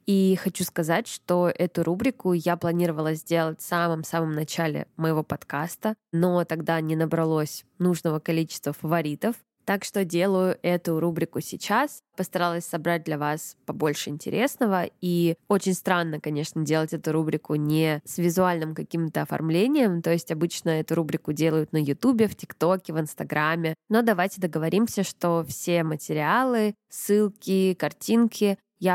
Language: Russian